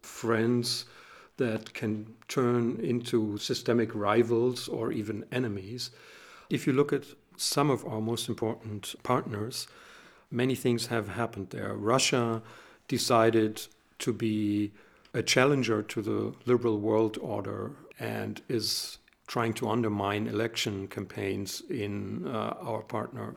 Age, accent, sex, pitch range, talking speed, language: 50-69, German, male, 105-120 Hz, 120 wpm, English